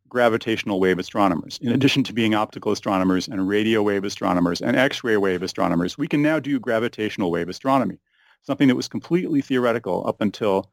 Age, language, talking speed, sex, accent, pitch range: 40-59, English, 175 wpm, male, American, 95-125 Hz